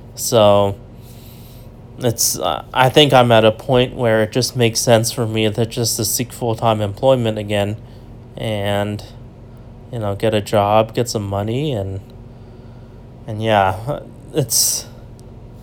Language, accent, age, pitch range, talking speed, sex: English, American, 20-39, 115-125 Hz, 140 wpm, male